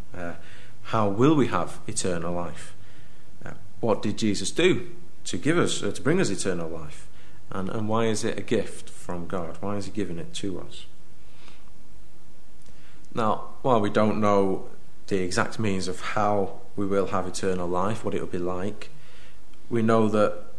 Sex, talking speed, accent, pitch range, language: male, 175 wpm, British, 95-115 Hz, English